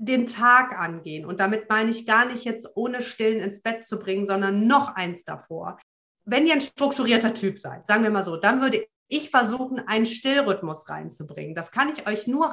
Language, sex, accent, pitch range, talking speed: German, female, German, 205-260 Hz, 200 wpm